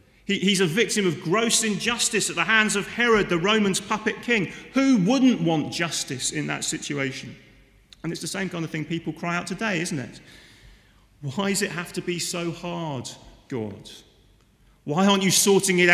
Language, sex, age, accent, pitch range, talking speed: English, male, 30-49, British, 115-170 Hz, 185 wpm